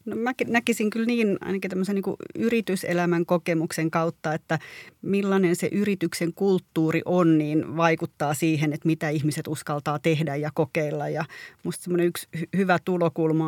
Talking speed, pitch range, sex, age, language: 140 wpm, 155-180 Hz, female, 30-49, Finnish